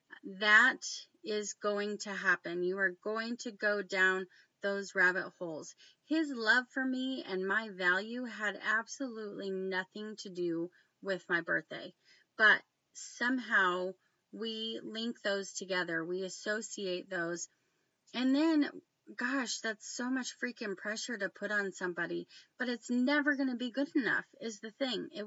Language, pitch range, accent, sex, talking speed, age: English, 185-245 Hz, American, female, 145 wpm, 30-49